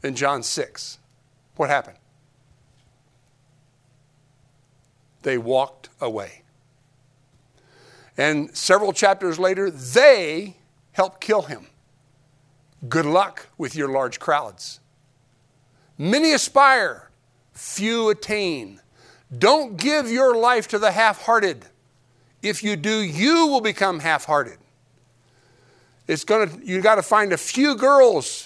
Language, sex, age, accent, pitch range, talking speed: English, male, 60-79, American, 130-210 Hz, 100 wpm